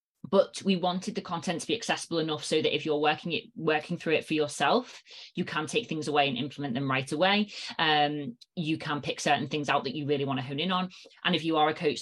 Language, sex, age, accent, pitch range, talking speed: English, female, 20-39, British, 140-165 Hz, 255 wpm